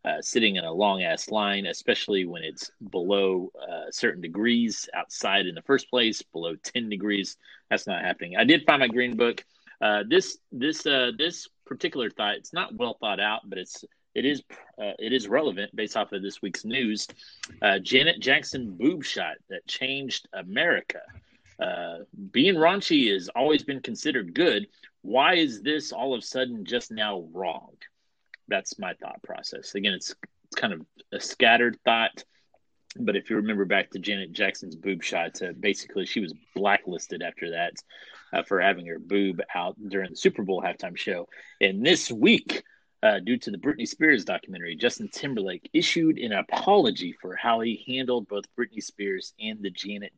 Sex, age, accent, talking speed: male, 30-49, American, 175 wpm